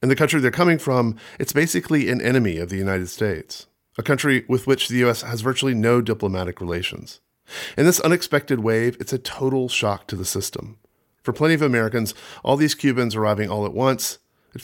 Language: English